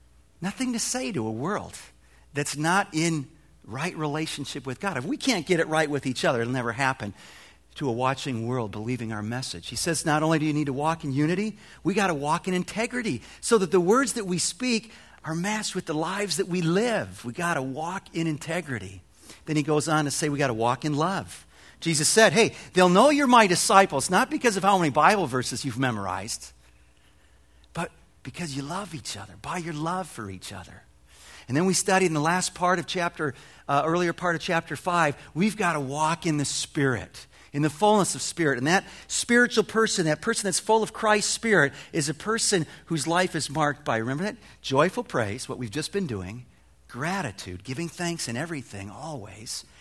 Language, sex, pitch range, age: English, male, 125-185 Hz, 50-69